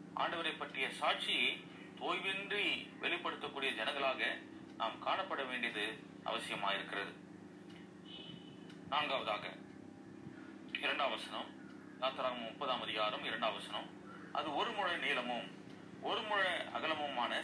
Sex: male